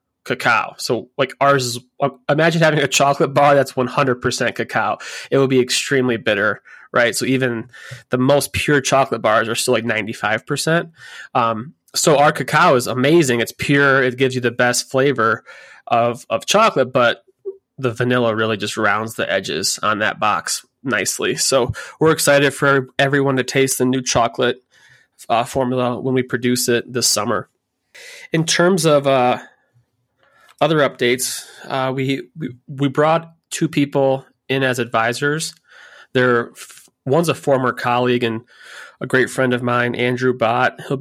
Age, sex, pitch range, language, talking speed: 20-39, male, 120-140 Hz, English, 160 wpm